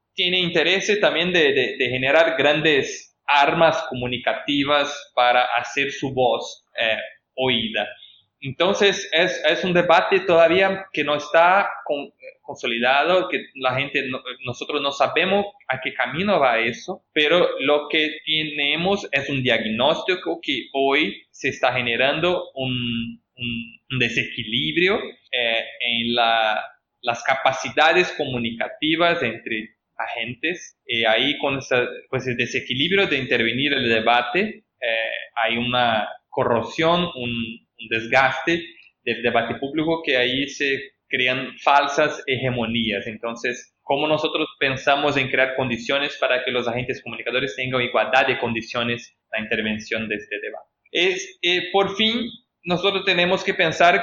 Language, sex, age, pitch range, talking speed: Spanish, male, 20-39, 120-170 Hz, 130 wpm